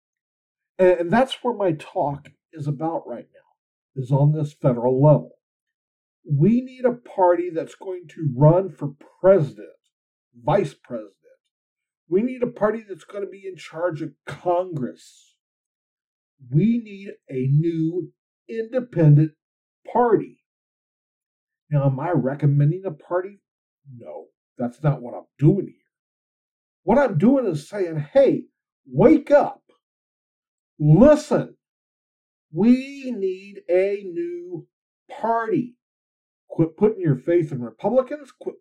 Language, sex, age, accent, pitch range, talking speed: English, male, 50-69, American, 155-245 Hz, 120 wpm